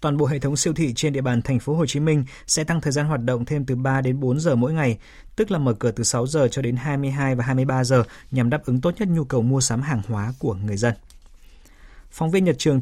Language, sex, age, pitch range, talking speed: Vietnamese, male, 20-39, 120-150 Hz, 275 wpm